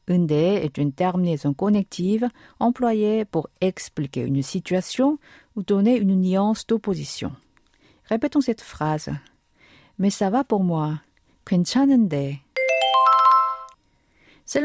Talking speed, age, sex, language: 100 wpm, 50-69, female, French